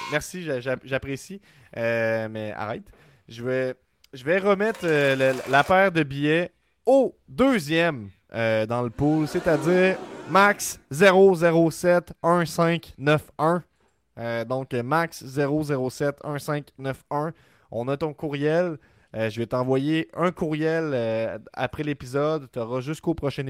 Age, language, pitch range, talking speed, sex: 20-39, French, 120-155 Hz, 120 wpm, male